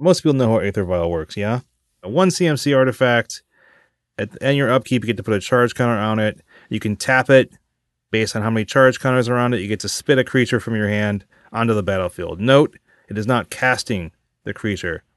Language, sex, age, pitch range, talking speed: English, male, 30-49, 100-125 Hz, 215 wpm